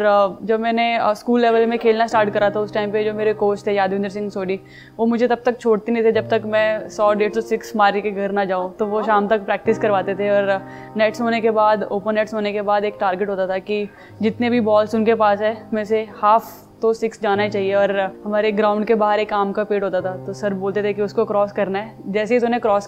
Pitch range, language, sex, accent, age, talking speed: 200-225 Hz, Hindi, female, native, 20-39, 255 wpm